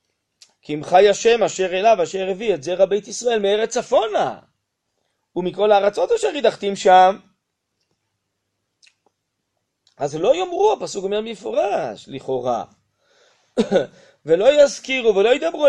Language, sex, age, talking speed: Hebrew, male, 30-49, 115 wpm